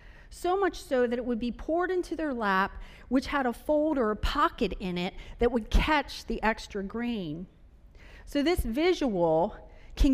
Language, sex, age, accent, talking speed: English, female, 40-59, American, 180 wpm